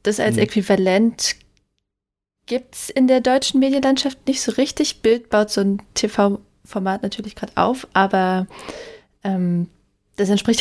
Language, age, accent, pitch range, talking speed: German, 20-39, German, 190-230 Hz, 135 wpm